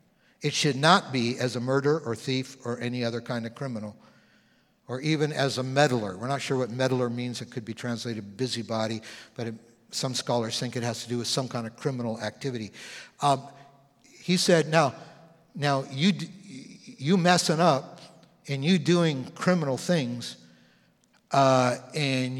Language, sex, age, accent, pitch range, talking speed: English, male, 60-79, American, 120-165 Hz, 165 wpm